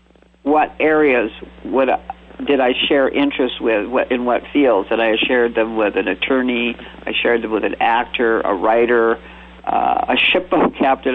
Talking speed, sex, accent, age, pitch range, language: 170 wpm, male, American, 50-69, 120-160 Hz, English